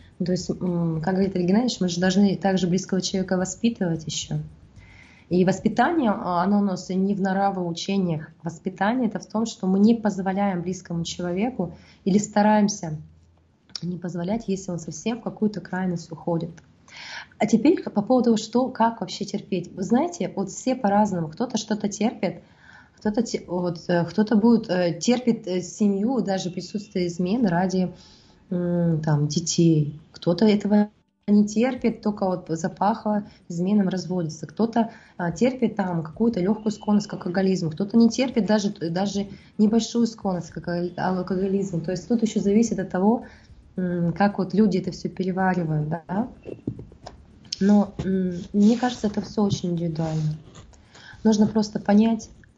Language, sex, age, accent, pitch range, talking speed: Russian, female, 20-39, native, 175-215 Hz, 140 wpm